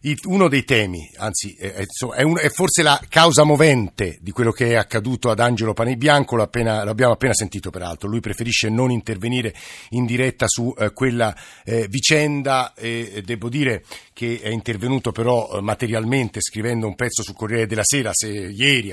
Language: Italian